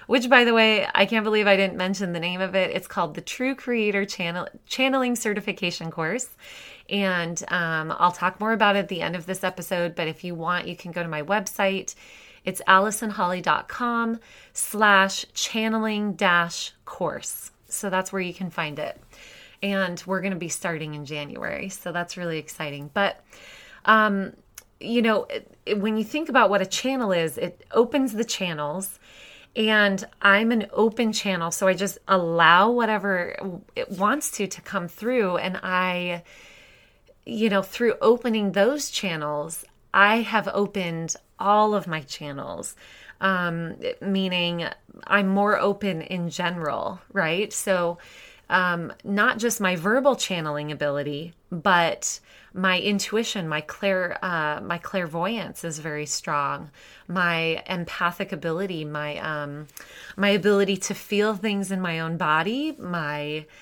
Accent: American